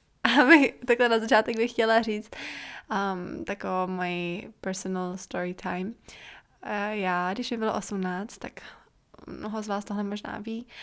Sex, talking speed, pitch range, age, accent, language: female, 150 wpm, 205-230 Hz, 20-39, native, Czech